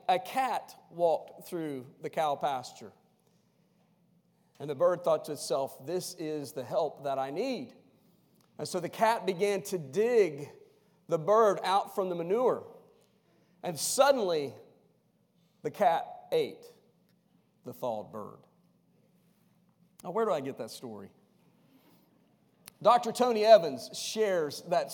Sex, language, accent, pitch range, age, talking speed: male, English, American, 160-215 Hz, 40-59, 130 wpm